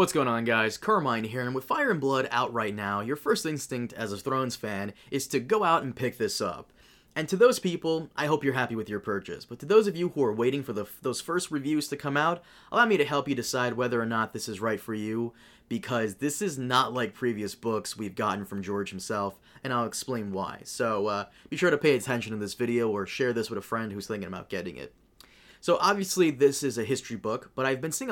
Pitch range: 110-145 Hz